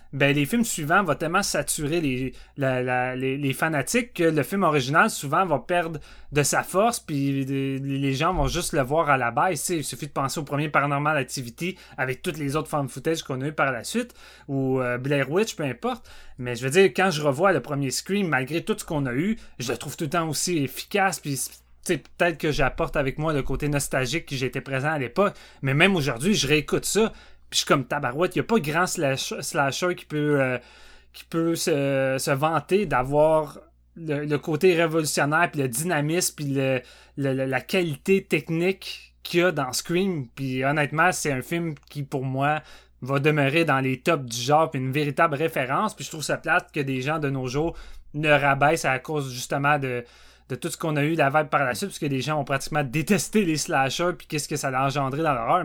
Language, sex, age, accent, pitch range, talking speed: French, male, 30-49, Canadian, 135-165 Hz, 220 wpm